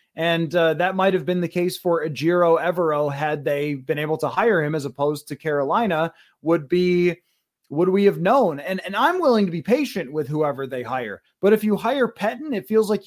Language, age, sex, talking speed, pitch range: English, 20-39, male, 210 wpm, 150-185 Hz